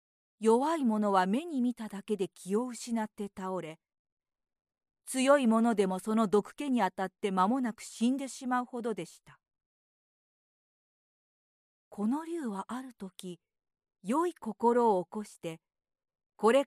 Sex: female